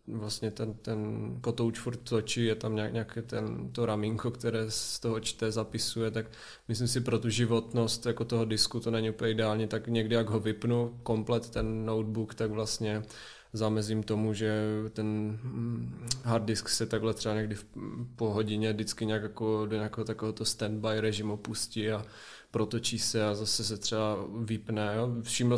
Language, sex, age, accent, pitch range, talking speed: Czech, male, 20-39, native, 110-115 Hz, 170 wpm